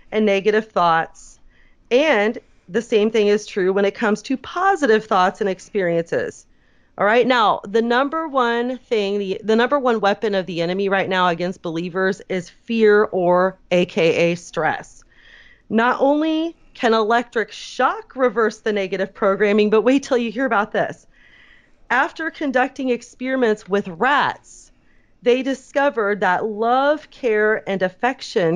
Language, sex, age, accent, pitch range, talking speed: English, female, 30-49, American, 200-250 Hz, 145 wpm